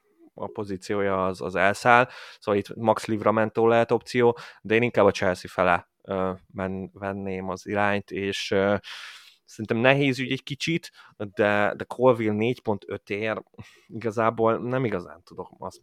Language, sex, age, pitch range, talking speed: Hungarian, male, 20-39, 95-115 Hz, 145 wpm